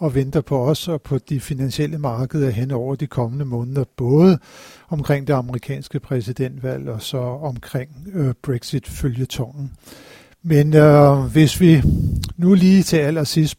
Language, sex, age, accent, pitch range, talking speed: Danish, male, 60-79, native, 130-155 Hz, 135 wpm